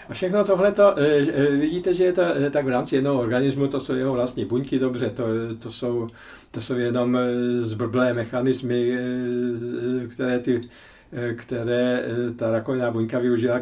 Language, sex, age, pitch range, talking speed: Czech, male, 50-69, 120-135 Hz, 145 wpm